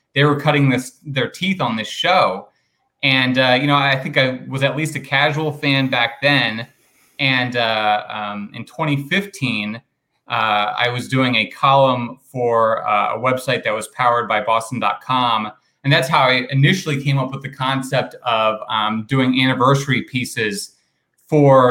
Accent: American